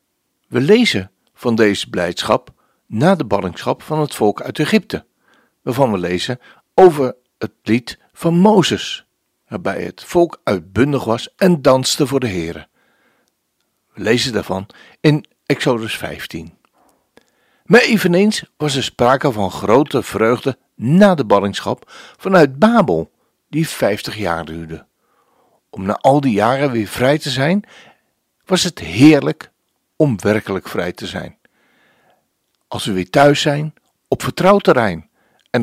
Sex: male